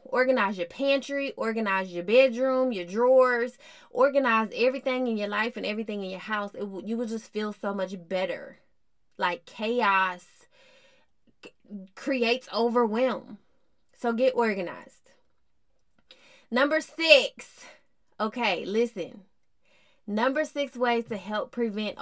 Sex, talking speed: female, 125 wpm